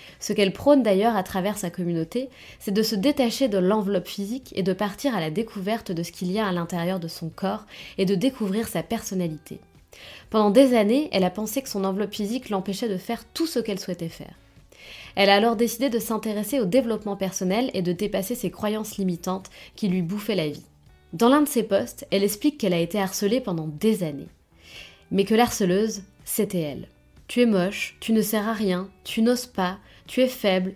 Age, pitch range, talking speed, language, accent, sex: 20-39, 185-230 Hz, 210 wpm, French, French, female